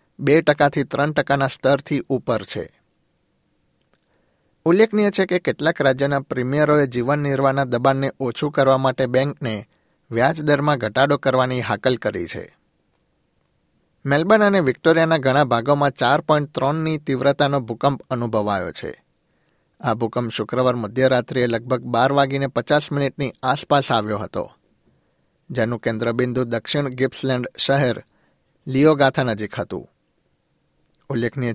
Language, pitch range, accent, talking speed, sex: Gujarati, 125-145 Hz, native, 110 wpm, male